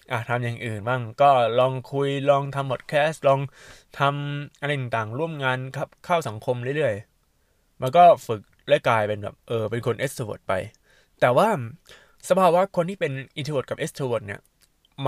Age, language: 20-39, Thai